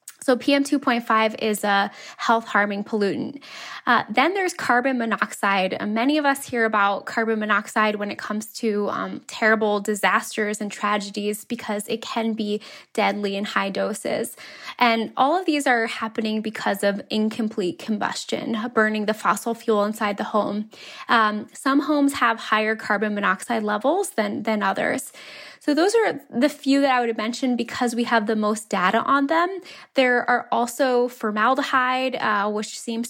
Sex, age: female, 10-29